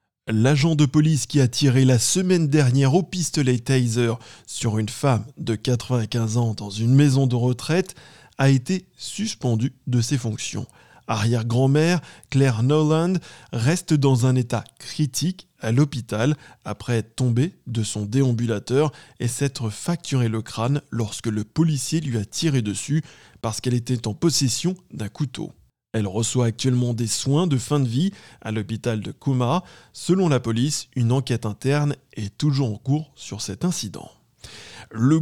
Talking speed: 155 wpm